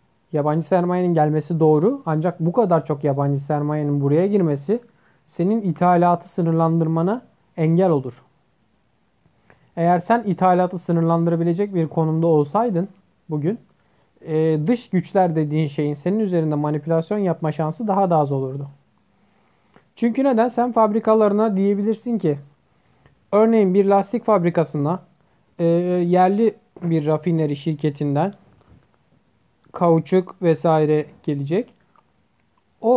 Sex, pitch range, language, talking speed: male, 155-200 Hz, Turkish, 100 wpm